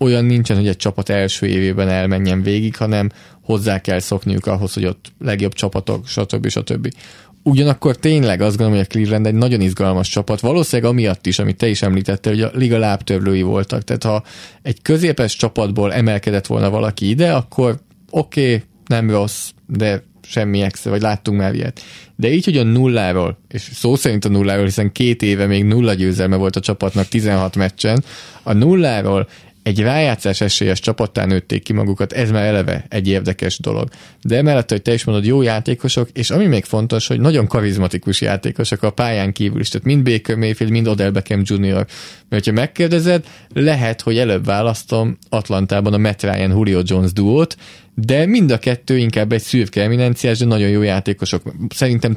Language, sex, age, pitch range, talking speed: Hungarian, male, 20-39, 100-120 Hz, 175 wpm